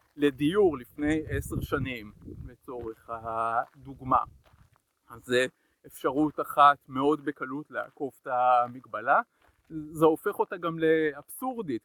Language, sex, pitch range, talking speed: Hebrew, male, 130-155 Hz, 100 wpm